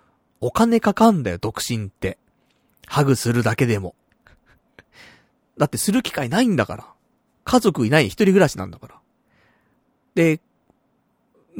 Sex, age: male, 40-59